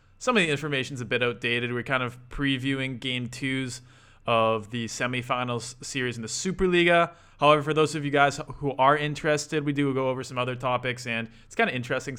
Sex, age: male, 20-39